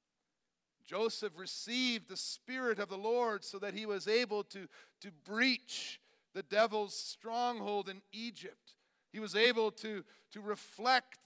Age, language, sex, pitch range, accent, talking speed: 50-69, English, male, 180-230 Hz, American, 140 wpm